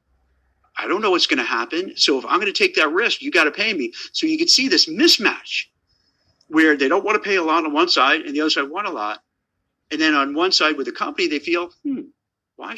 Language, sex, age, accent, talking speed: English, male, 50-69, American, 265 wpm